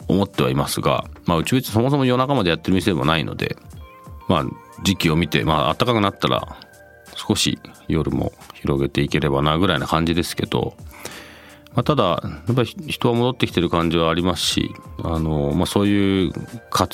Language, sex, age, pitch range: Japanese, male, 40-59, 75-100 Hz